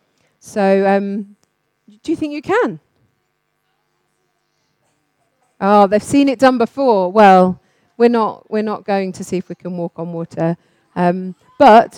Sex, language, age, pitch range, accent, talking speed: female, English, 40-59, 185-240 Hz, British, 145 wpm